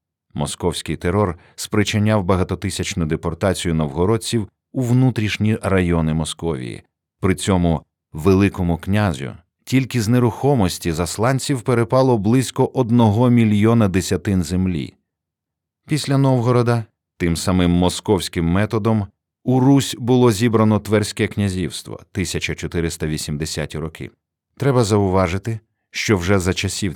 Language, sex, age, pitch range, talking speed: Ukrainian, male, 50-69, 85-110 Hz, 100 wpm